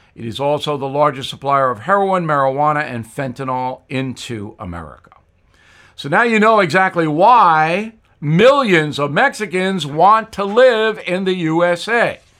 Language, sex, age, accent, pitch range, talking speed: English, male, 60-79, American, 135-195 Hz, 135 wpm